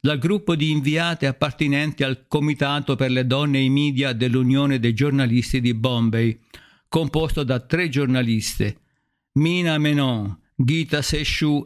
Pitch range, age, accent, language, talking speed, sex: 125-150 Hz, 50-69, native, Italian, 135 wpm, male